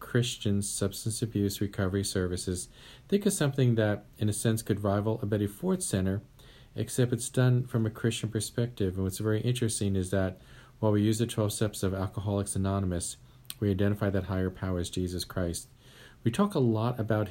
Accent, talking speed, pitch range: American, 185 wpm, 95-115 Hz